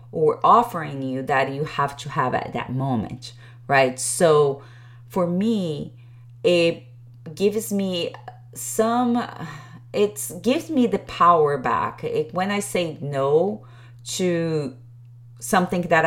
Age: 20-39